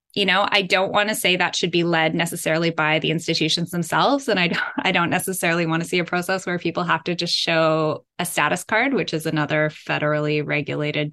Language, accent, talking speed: English, American, 210 wpm